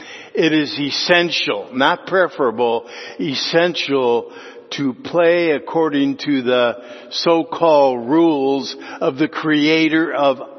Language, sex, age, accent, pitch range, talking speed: English, male, 60-79, American, 110-140 Hz, 95 wpm